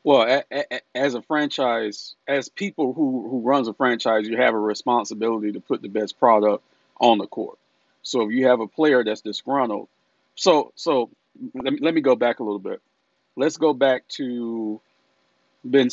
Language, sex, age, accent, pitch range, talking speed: English, male, 40-59, American, 105-140 Hz, 175 wpm